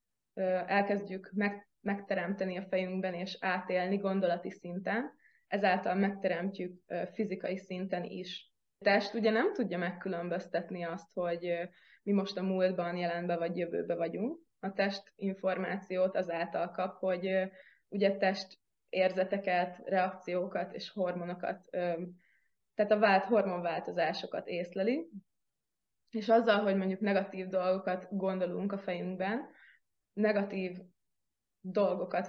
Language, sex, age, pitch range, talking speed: Hungarian, female, 20-39, 185-200 Hz, 105 wpm